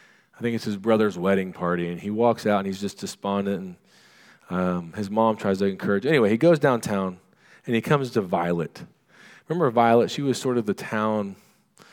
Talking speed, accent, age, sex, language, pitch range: 195 wpm, American, 40-59, male, English, 100-155 Hz